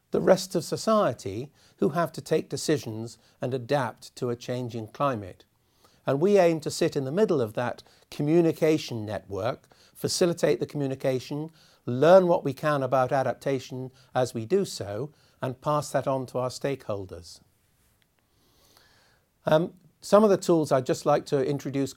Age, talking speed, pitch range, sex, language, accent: 50-69, 155 wpm, 125-165 Hz, male, English, British